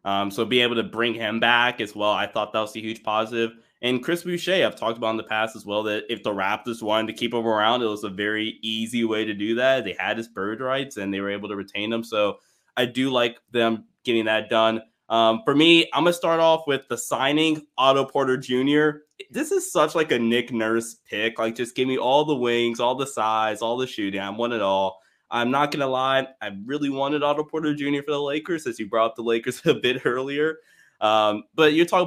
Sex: male